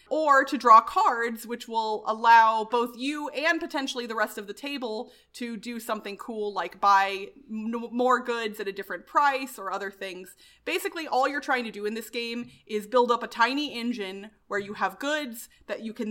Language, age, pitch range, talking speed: English, 30-49, 195-245 Hz, 195 wpm